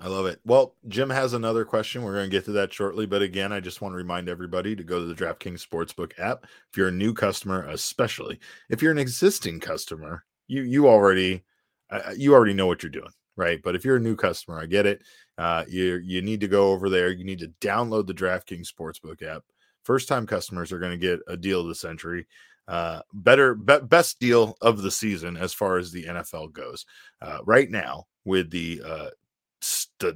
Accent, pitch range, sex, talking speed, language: American, 90-115 Hz, male, 215 wpm, English